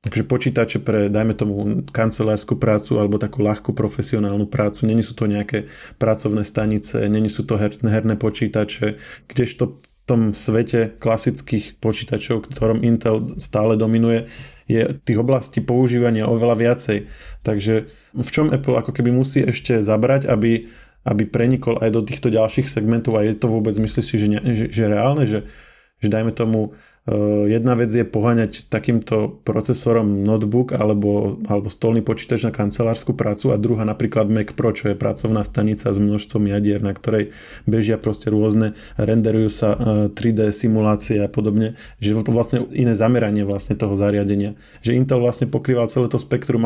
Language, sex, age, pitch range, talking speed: Slovak, male, 20-39, 105-120 Hz, 160 wpm